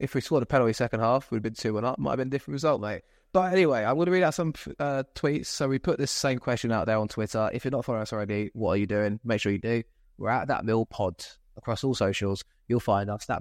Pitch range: 105-135 Hz